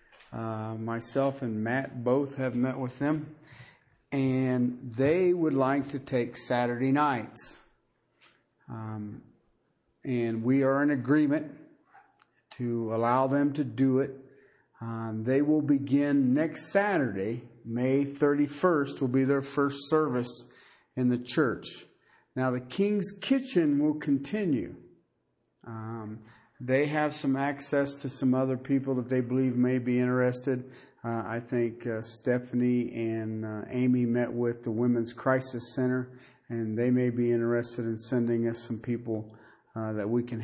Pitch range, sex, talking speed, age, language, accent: 120-140 Hz, male, 140 wpm, 50-69, English, American